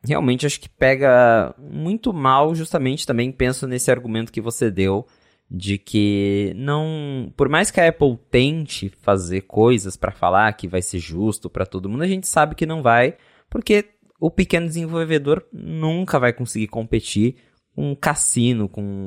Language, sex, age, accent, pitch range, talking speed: Portuguese, male, 20-39, Brazilian, 100-140 Hz, 160 wpm